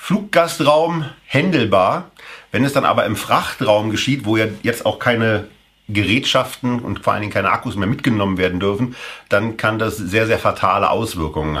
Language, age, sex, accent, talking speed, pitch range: German, 50-69, male, German, 165 wpm, 110-140 Hz